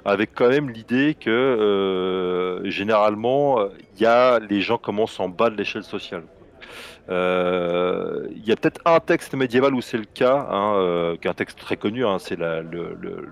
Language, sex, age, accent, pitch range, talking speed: French, male, 30-49, French, 95-120 Hz, 190 wpm